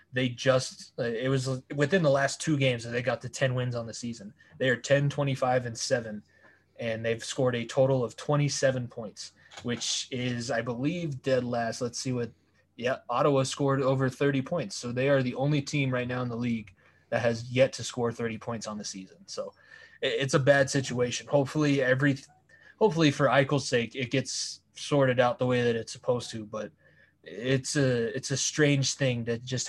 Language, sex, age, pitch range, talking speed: English, male, 20-39, 120-135 Hz, 200 wpm